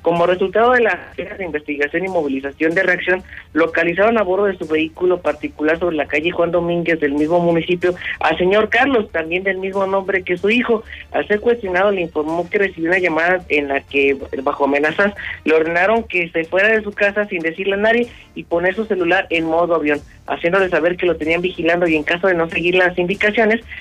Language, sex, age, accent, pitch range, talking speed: Spanish, male, 40-59, Mexican, 150-190 Hz, 205 wpm